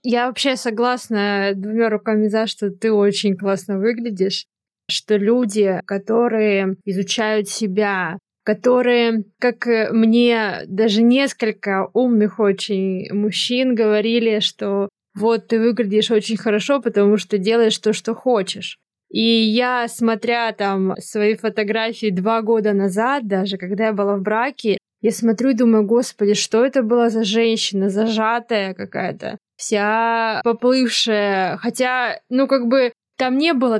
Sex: female